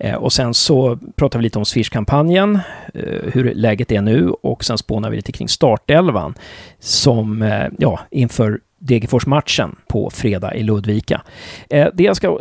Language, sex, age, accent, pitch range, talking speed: Swedish, male, 40-59, native, 115-155 Hz, 145 wpm